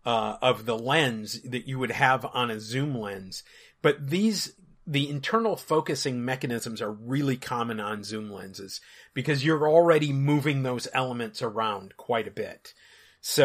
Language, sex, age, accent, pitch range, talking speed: English, male, 40-59, American, 115-150 Hz, 155 wpm